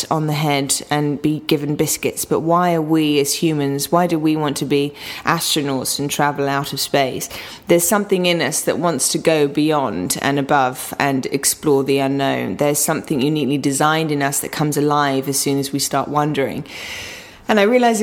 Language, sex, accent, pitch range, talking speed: English, female, British, 145-175 Hz, 195 wpm